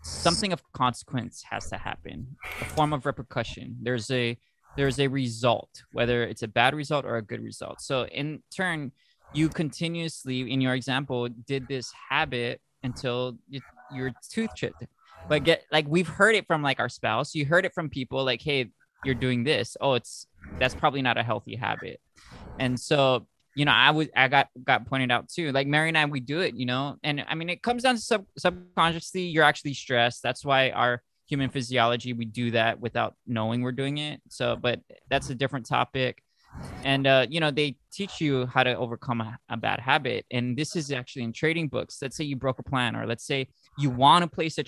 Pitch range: 125-150 Hz